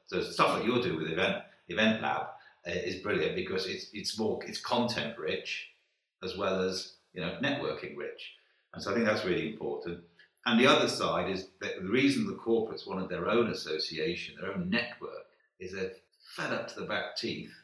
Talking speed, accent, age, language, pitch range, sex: 195 wpm, British, 50-69, English, 85-130 Hz, male